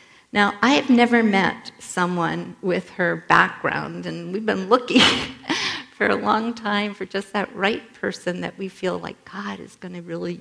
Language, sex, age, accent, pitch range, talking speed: English, female, 50-69, American, 175-215 Hz, 180 wpm